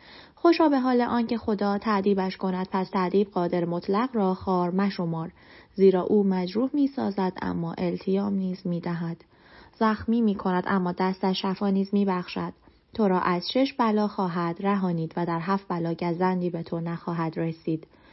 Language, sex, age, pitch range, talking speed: Persian, female, 20-39, 170-205 Hz, 150 wpm